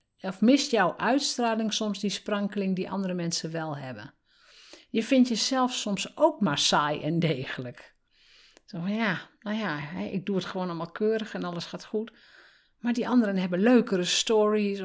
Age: 50-69